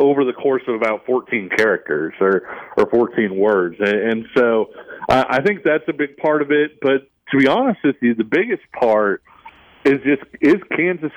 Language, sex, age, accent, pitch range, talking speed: English, male, 40-59, American, 110-140 Hz, 190 wpm